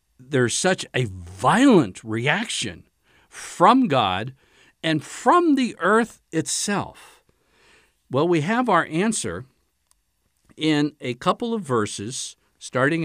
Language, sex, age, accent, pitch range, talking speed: English, male, 60-79, American, 110-175 Hz, 105 wpm